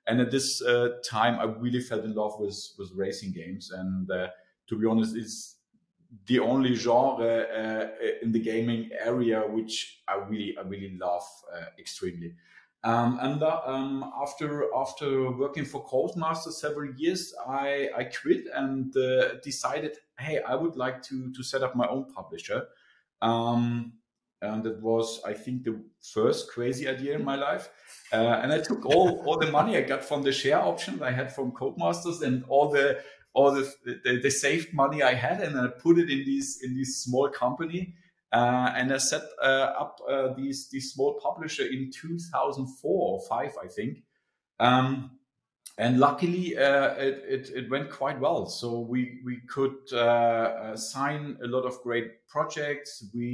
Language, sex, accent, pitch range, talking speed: English, male, German, 115-140 Hz, 180 wpm